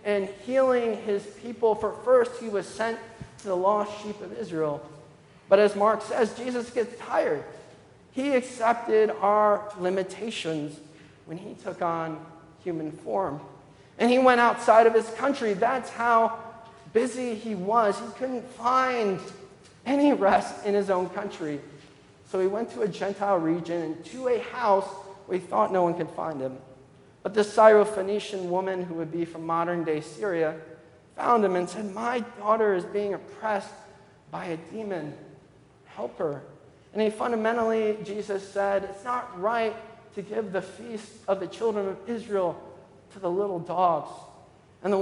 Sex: male